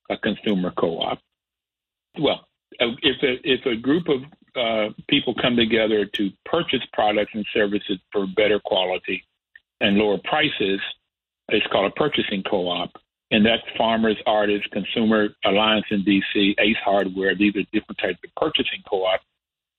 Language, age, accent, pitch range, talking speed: English, 60-79, American, 100-120 Hz, 145 wpm